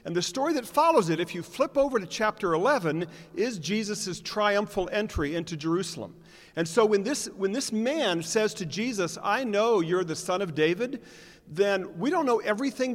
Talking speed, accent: 190 wpm, American